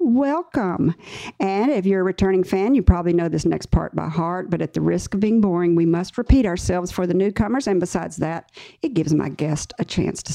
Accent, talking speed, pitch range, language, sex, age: American, 225 wpm, 160-195 Hz, English, female, 50-69